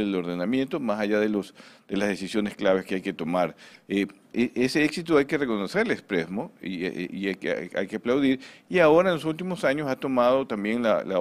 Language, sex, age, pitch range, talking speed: Spanish, male, 50-69, 100-125 Hz, 220 wpm